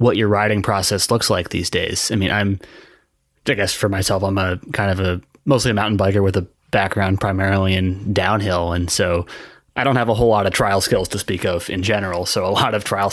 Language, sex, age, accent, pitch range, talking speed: English, male, 20-39, American, 95-115 Hz, 235 wpm